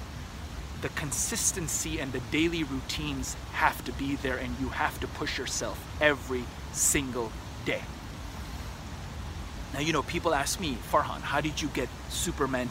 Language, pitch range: English, 100-150 Hz